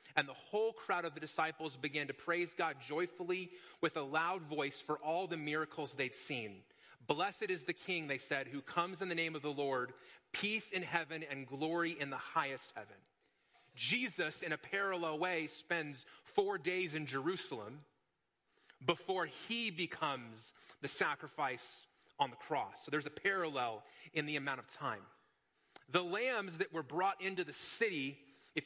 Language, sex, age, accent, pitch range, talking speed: English, male, 30-49, American, 140-190 Hz, 170 wpm